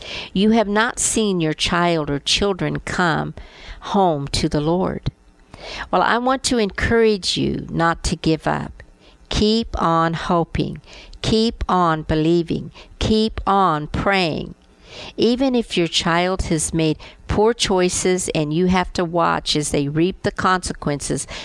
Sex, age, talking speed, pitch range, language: female, 60-79, 140 wpm, 155-195 Hz, English